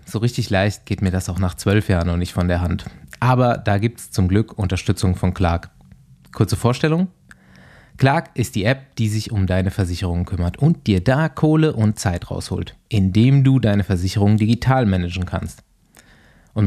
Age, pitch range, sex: 20-39, 95-130 Hz, male